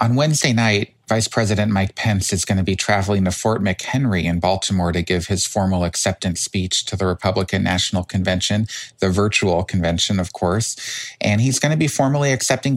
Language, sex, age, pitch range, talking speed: English, male, 40-59, 90-110 Hz, 190 wpm